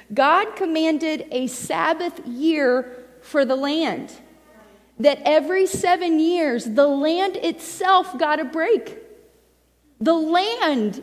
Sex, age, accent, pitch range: female, 40-59, American, 230-320 Hz